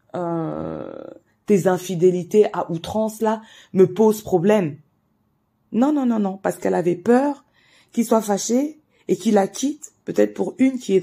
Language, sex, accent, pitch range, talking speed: French, female, French, 175-235 Hz, 160 wpm